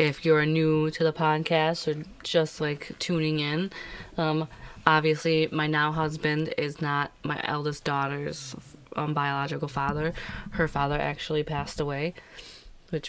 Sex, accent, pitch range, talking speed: female, American, 145-160 Hz, 140 wpm